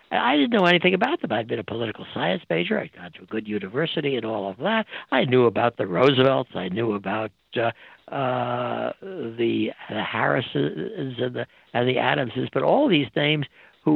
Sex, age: male, 60-79